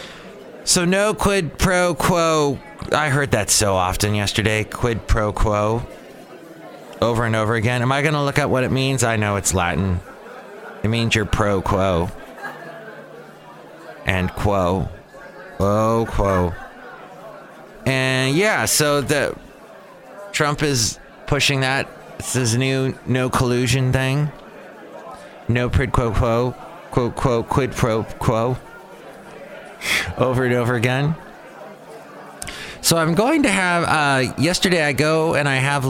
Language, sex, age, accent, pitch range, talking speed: English, male, 30-49, American, 105-140 Hz, 130 wpm